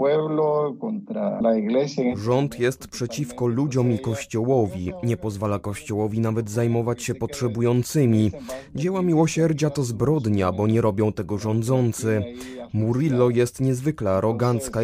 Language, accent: Polish, native